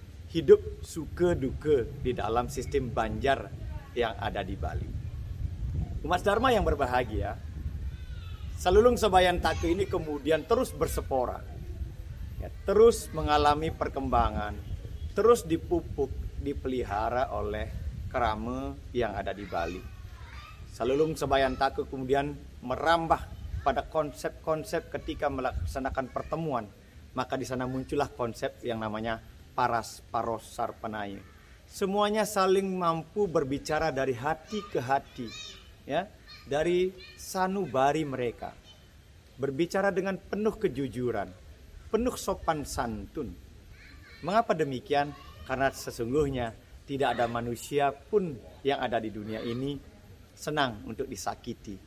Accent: native